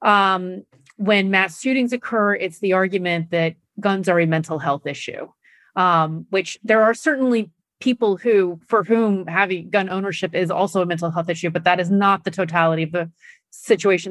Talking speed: 180 wpm